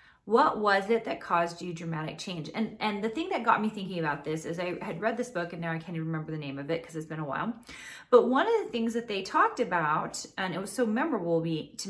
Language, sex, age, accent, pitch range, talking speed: English, female, 30-49, American, 165-220 Hz, 270 wpm